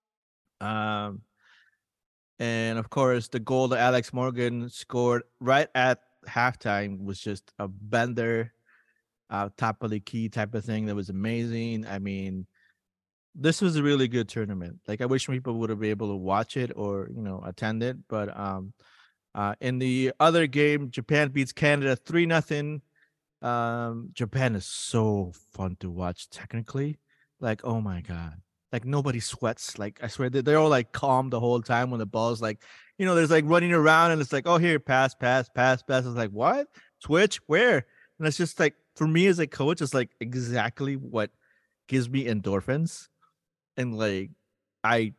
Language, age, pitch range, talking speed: English, 30-49, 105-135 Hz, 175 wpm